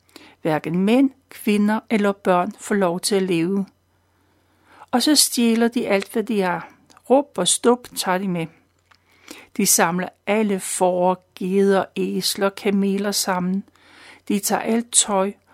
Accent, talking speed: native, 140 wpm